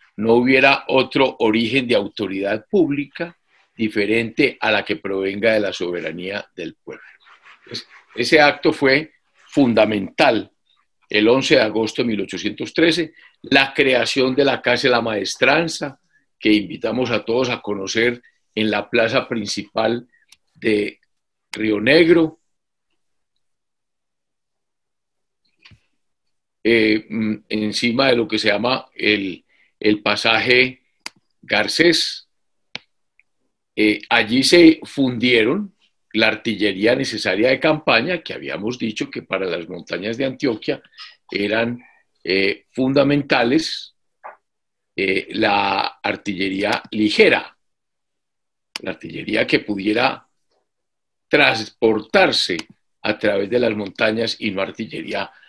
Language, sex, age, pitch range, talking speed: Spanish, male, 50-69, 110-140 Hz, 105 wpm